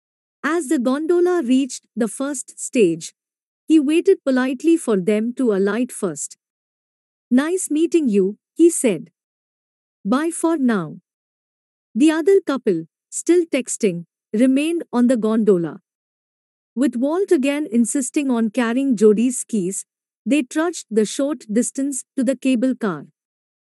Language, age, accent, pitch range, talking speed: English, 50-69, Indian, 225-300 Hz, 125 wpm